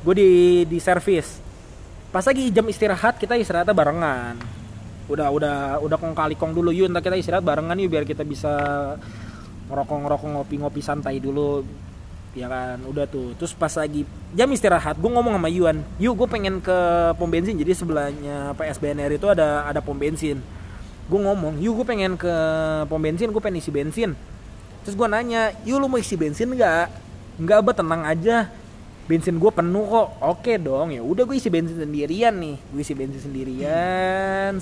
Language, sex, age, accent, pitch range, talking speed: Indonesian, male, 20-39, native, 145-205 Hz, 170 wpm